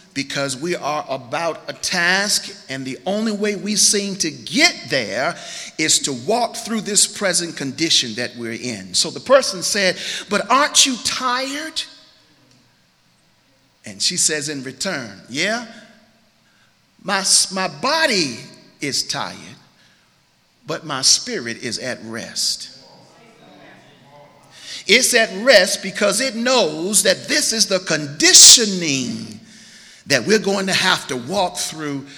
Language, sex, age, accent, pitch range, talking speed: English, male, 50-69, American, 175-235 Hz, 130 wpm